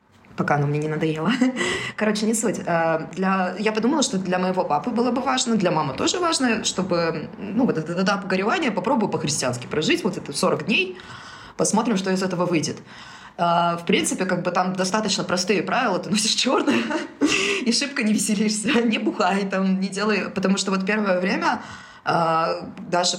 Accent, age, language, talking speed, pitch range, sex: native, 20-39, Russian, 170 wpm, 180-220 Hz, female